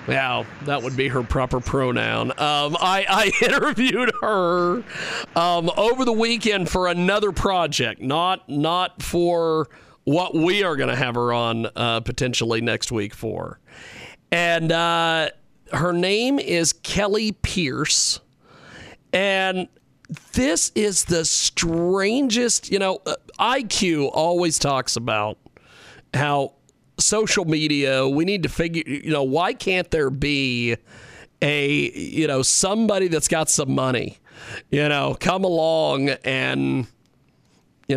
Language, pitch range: English, 130-190 Hz